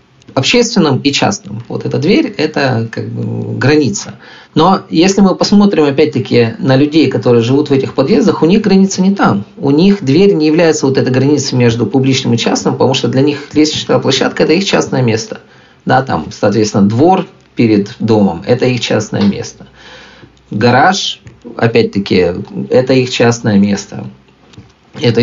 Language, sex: Russian, male